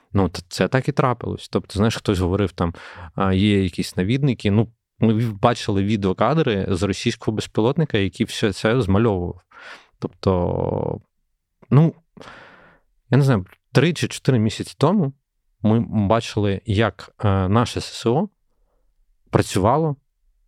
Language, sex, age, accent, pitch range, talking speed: Ukrainian, male, 30-49, native, 95-125 Hz, 115 wpm